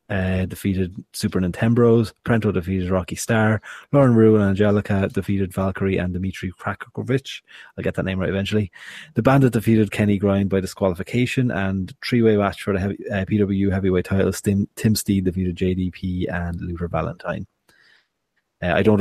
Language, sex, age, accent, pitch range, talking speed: English, male, 30-49, Irish, 95-110 Hz, 160 wpm